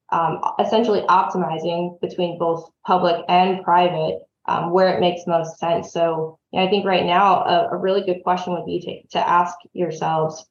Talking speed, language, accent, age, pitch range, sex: 185 wpm, English, American, 20-39, 165-185 Hz, female